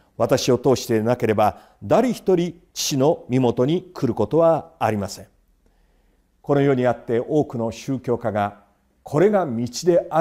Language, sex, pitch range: Japanese, male, 110-150 Hz